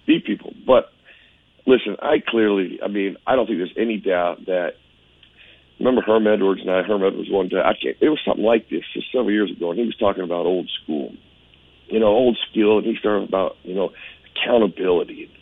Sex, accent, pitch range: male, American, 100-125 Hz